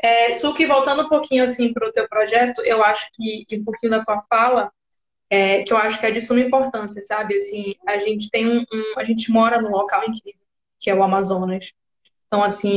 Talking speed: 220 wpm